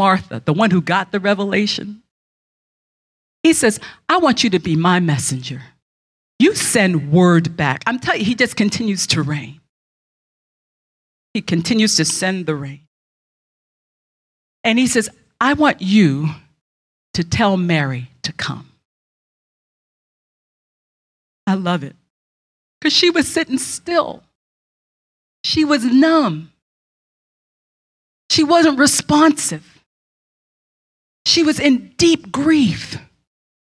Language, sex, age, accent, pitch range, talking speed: English, female, 40-59, American, 170-280 Hz, 115 wpm